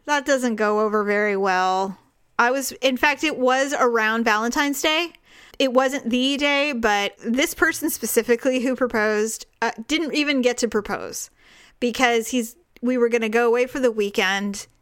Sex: female